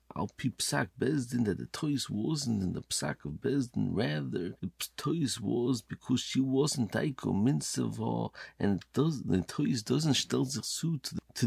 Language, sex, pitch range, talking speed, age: English, male, 120-150 Hz, 155 wpm, 50-69